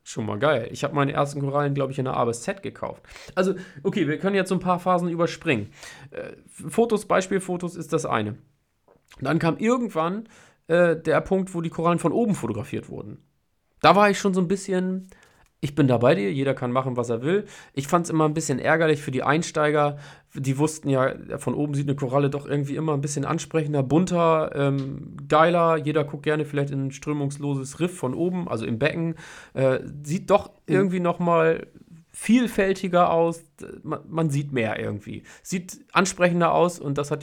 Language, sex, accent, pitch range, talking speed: German, male, German, 135-170 Hz, 195 wpm